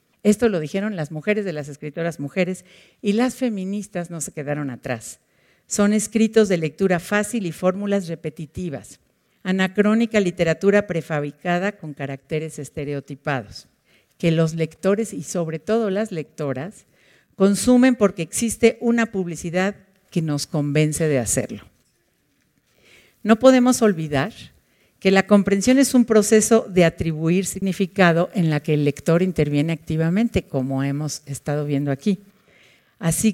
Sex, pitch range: female, 150-200 Hz